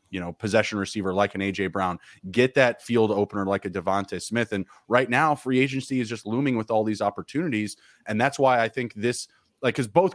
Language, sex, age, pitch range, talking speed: English, male, 20-39, 95-115 Hz, 220 wpm